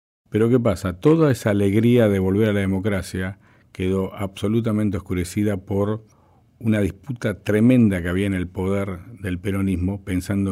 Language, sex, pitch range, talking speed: Spanish, male, 90-105 Hz, 150 wpm